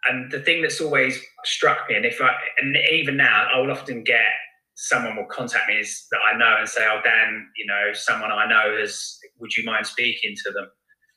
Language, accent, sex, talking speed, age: English, British, male, 220 wpm, 20-39